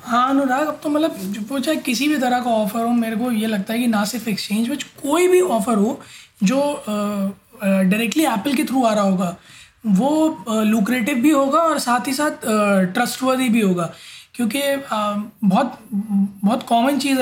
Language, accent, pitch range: Hindi, native, 205-260 Hz